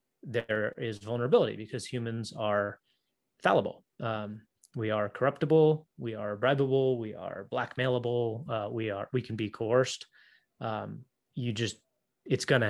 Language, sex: English, male